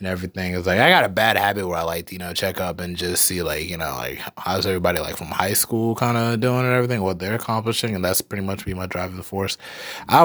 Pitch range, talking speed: 90-110 Hz, 270 wpm